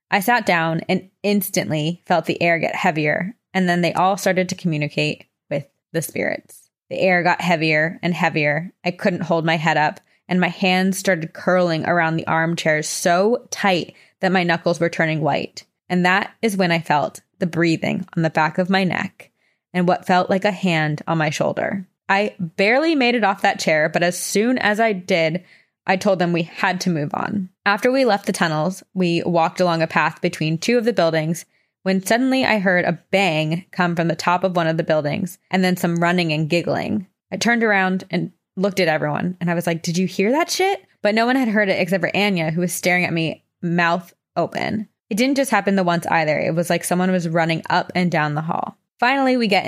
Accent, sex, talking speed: American, female, 220 wpm